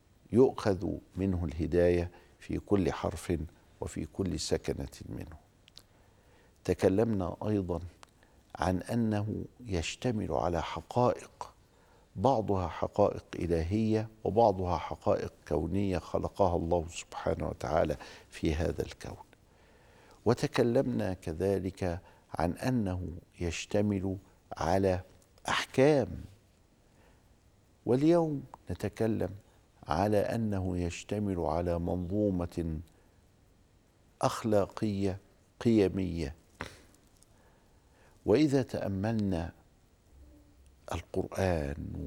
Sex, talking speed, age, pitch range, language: male, 70 wpm, 50-69, 85-105 Hz, Arabic